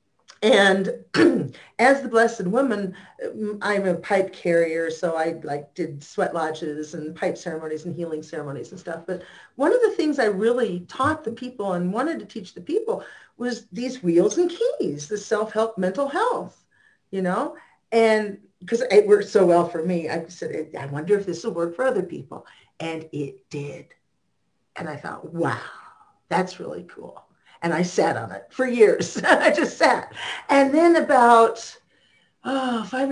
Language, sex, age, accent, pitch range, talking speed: English, female, 50-69, American, 180-265 Hz, 170 wpm